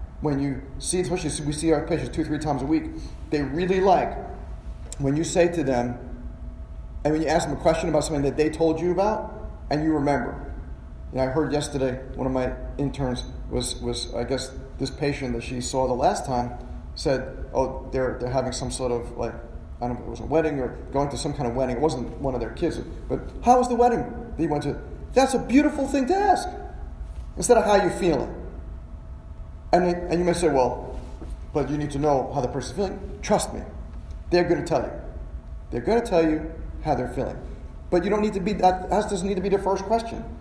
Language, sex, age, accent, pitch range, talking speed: English, male, 40-59, American, 120-170 Hz, 225 wpm